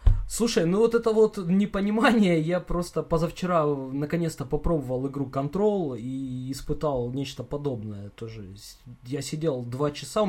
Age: 20-39